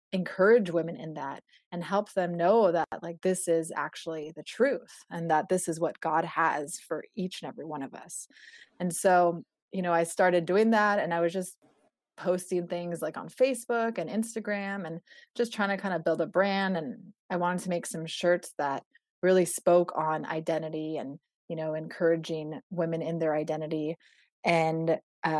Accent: American